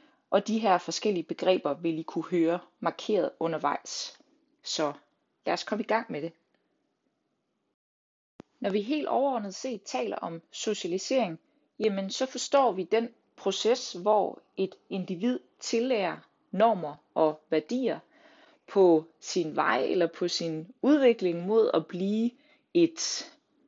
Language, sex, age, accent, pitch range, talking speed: Danish, female, 30-49, native, 170-250 Hz, 130 wpm